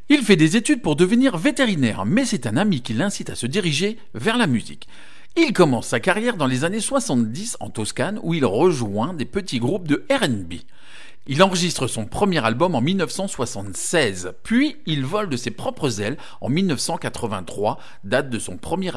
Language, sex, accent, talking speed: English, male, French, 180 wpm